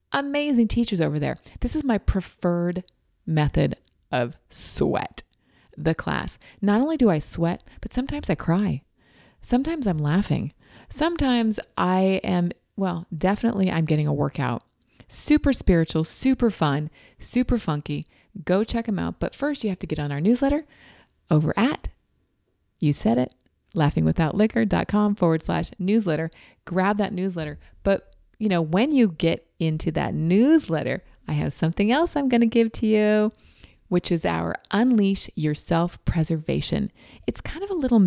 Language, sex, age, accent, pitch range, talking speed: English, female, 30-49, American, 160-225 Hz, 150 wpm